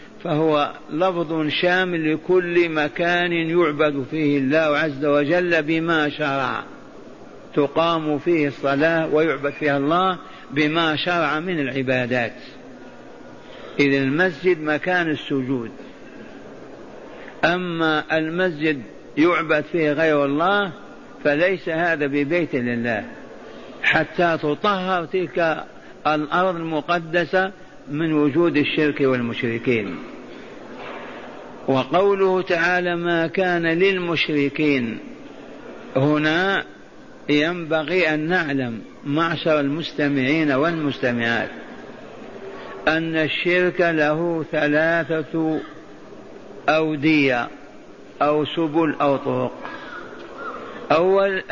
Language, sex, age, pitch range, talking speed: Arabic, male, 50-69, 145-170 Hz, 80 wpm